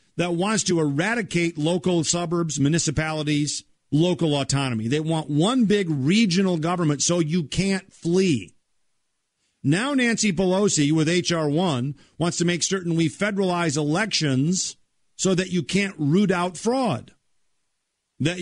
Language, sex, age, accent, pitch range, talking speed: English, male, 50-69, American, 145-190 Hz, 130 wpm